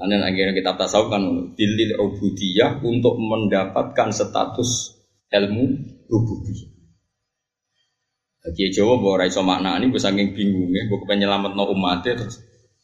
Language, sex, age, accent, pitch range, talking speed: Indonesian, male, 20-39, native, 100-170 Hz, 115 wpm